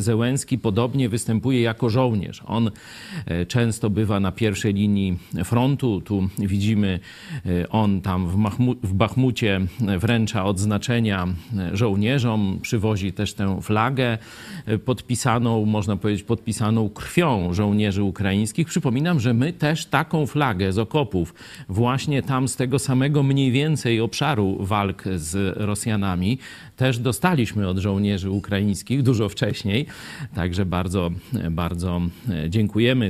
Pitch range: 100-125 Hz